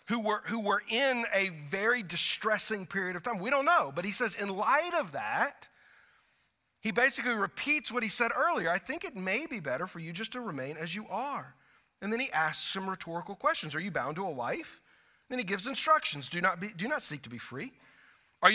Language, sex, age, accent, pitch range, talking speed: English, male, 40-59, American, 190-275 Hz, 225 wpm